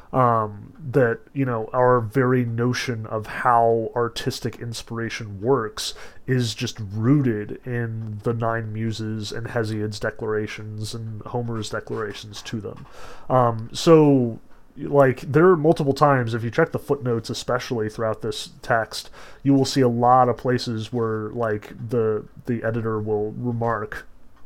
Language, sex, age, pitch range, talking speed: English, male, 30-49, 110-135 Hz, 140 wpm